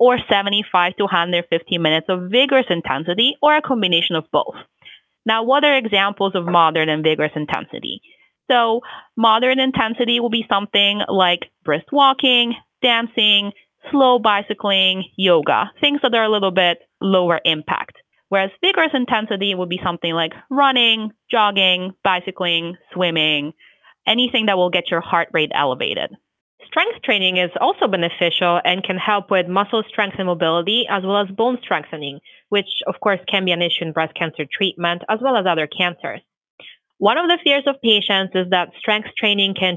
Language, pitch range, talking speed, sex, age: English, 180-230 Hz, 160 wpm, female, 30-49